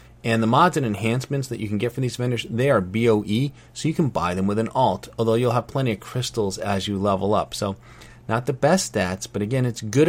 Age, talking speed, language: 30-49, 250 wpm, English